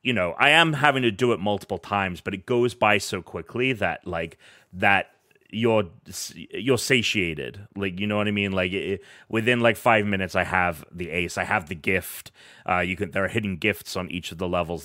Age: 30-49